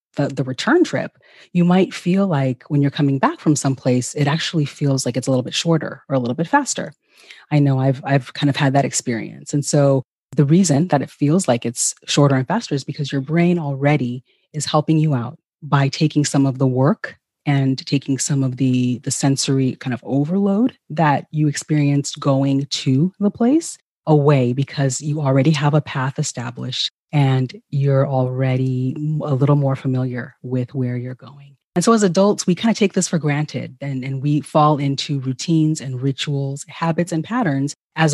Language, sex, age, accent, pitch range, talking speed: English, female, 30-49, American, 130-155 Hz, 195 wpm